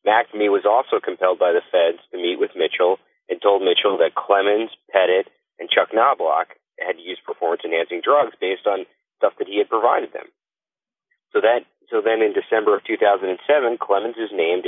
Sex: male